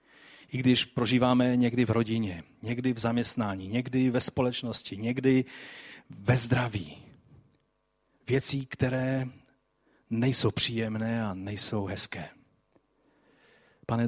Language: Czech